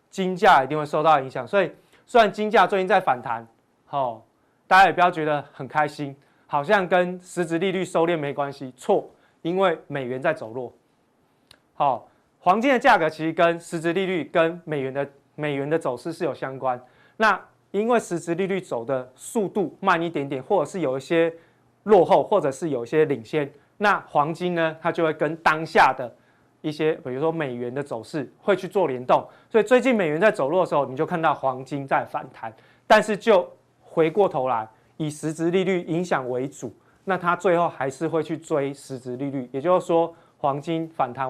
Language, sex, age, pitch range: Chinese, male, 20-39, 140-185 Hz